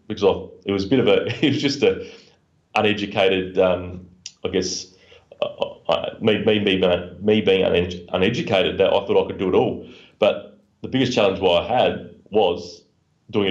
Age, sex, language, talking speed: 30-49, male, English, 170 wpm